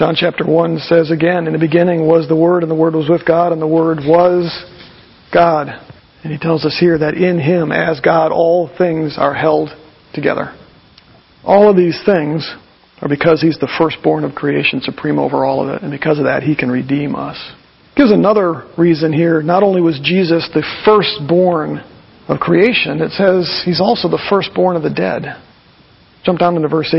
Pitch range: 160-190 Hz